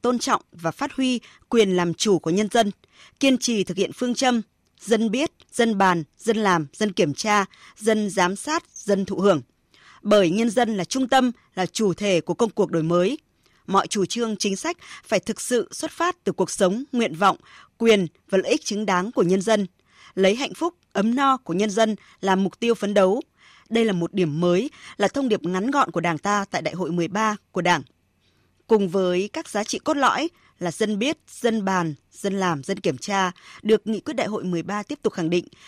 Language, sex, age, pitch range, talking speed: Vietnamese, female, 20-39, 180-235 Hz, 215 wpm